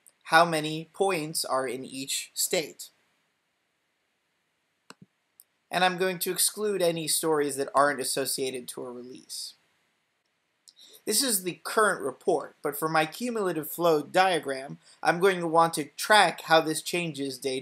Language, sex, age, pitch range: English, male, 30-49, 135-175 Hz